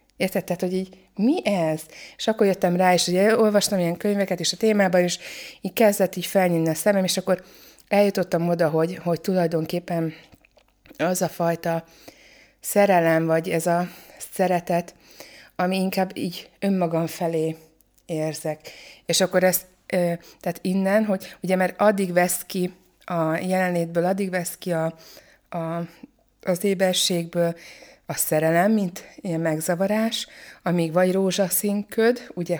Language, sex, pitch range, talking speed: Hungarian, female, 170-190 Hz, 140 wpm